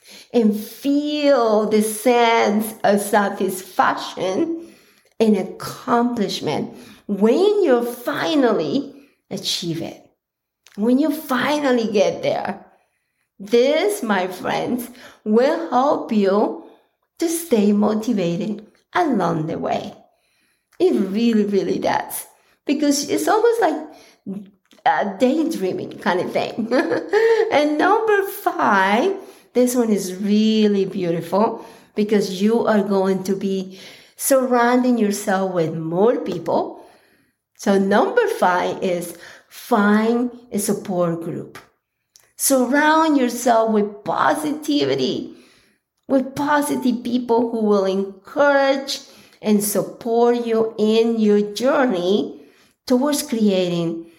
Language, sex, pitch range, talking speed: English, female, 200-275 Hz, 95 wpm